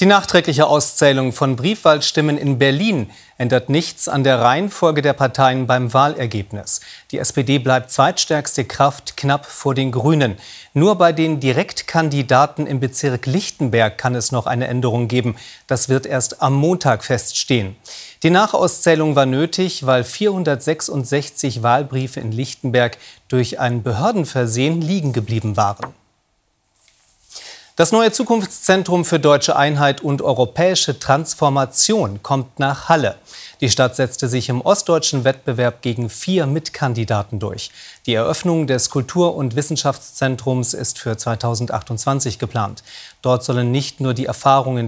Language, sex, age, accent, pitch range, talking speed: German, male, 40-59, German, 125-155 Hz, 130 wpm